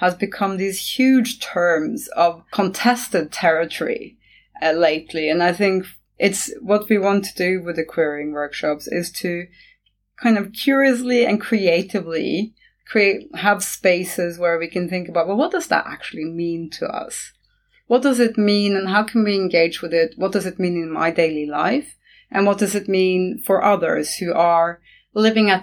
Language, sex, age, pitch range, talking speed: English, female, 30-49, 165-200 Hz, 180 wpm